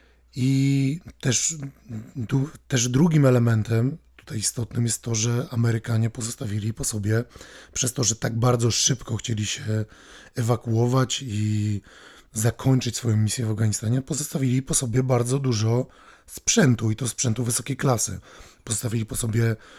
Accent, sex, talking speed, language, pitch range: native, male, 130 wpm, Polish, 110-125 Hz